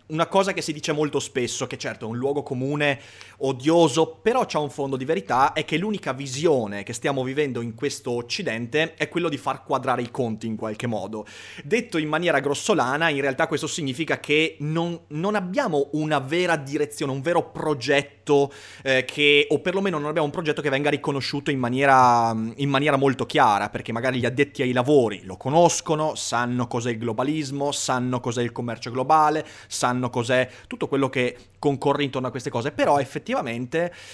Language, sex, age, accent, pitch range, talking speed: Italian, male, 30-49, native, 120-155 Hz, 185 wpm